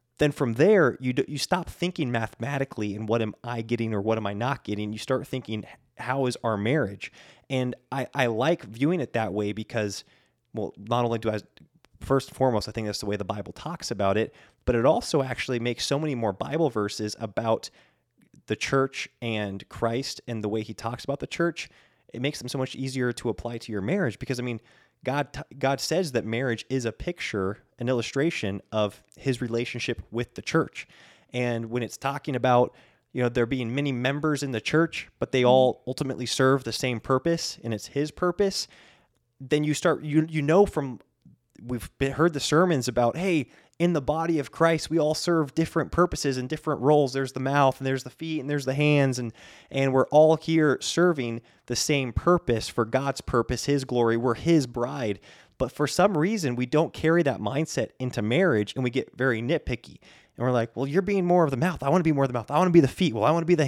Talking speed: 220 wpm